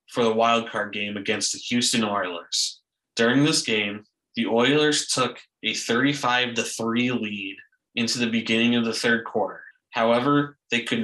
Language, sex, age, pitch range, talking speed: English, male, 20-39, 110-130 Hz, 145 wpm